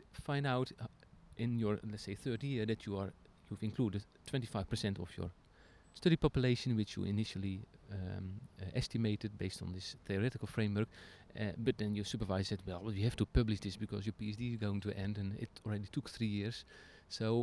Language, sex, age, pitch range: English, male, 40-59, 100-115 Hz